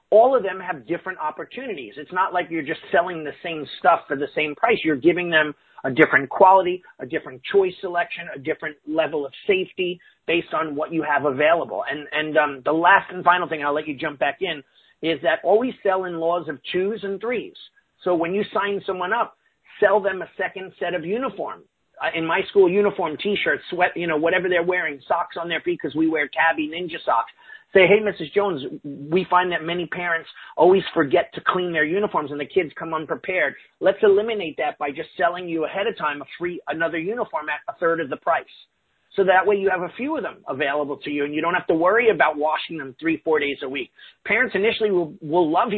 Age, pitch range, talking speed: 40-59, 155-195 Hz, 225 wpm